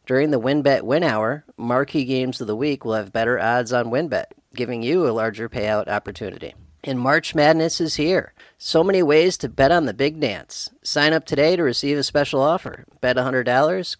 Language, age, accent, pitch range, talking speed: English, 40-59, American, 115-145 Hz, 195 wpm